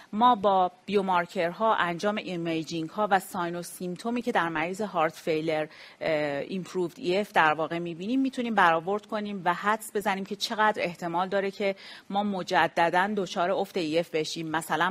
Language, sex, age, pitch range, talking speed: Persian, female, 40-59, 175-215 Hz, 155 wpm